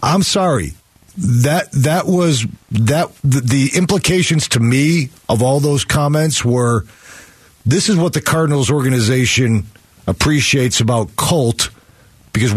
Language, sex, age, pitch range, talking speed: English, male, 40-59, 100-135 Hz, 125 wpm